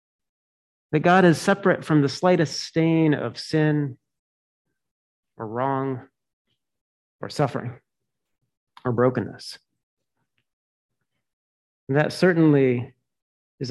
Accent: American